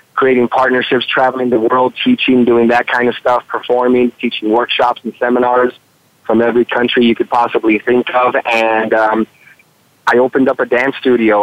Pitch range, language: 115-130 Hz, English